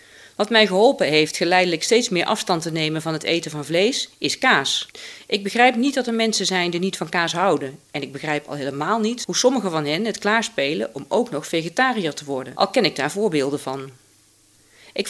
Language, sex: Dutch, female